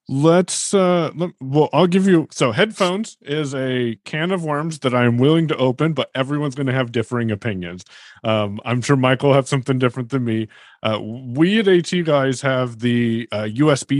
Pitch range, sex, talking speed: 115-145 Hz, male, 195 wpm